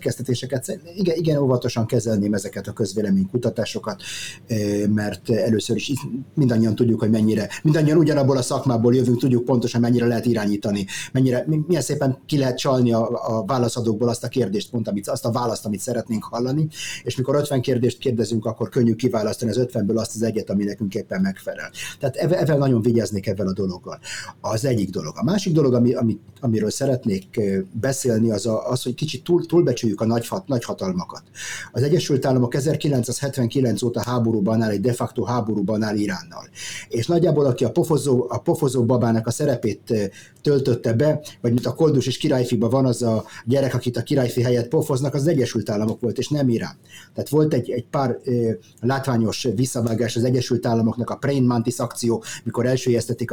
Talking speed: 175 wpm